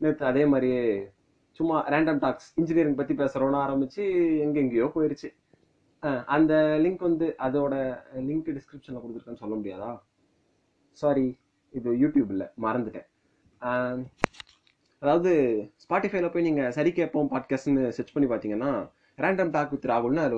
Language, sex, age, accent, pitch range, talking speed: Tamil, male, 20-39, native, 120-155 Hz, 120 wpm